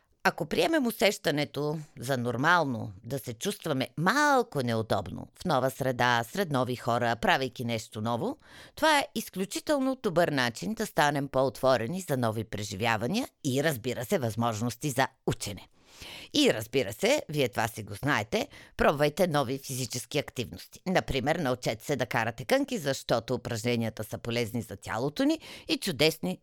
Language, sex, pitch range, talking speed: Bulgarian, female, 115-160 Hz, 145 wpm